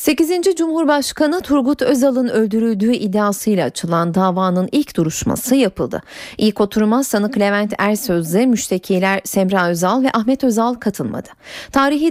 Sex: female